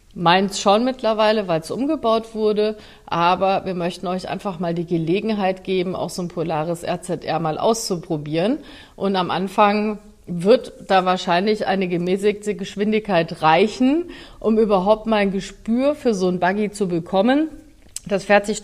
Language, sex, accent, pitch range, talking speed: German, female, German, 175-215 Hz, 150 wpm